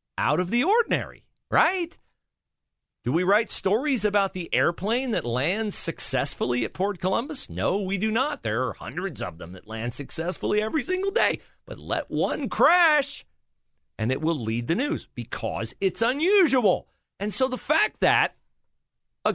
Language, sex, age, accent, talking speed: English, male, 40-59, American, 160 wpm